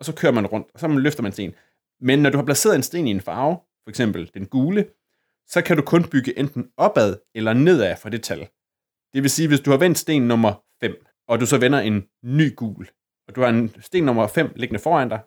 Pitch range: 110-145 Hz